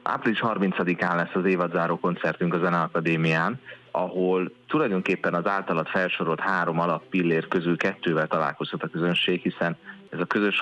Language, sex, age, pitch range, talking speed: Hungarian, male, 30-49, 80-95 Hz, 140 wpm